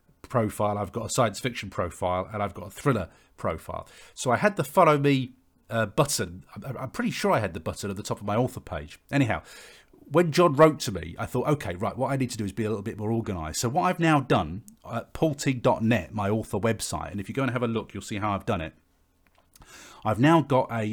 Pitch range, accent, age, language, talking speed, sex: 100-130 Hz, British, 40-59, English, 245 wpm, male